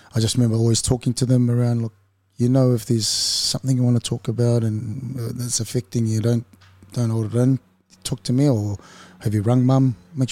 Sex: male